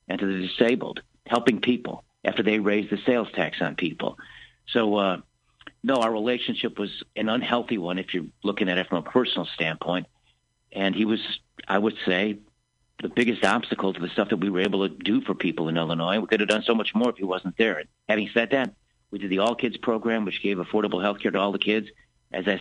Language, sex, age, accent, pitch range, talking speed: English, male, 50-69, American, 95-115 Hz, 225 wpm